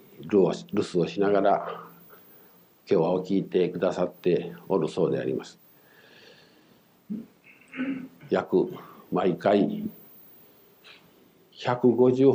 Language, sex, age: Japanese, male, 50-69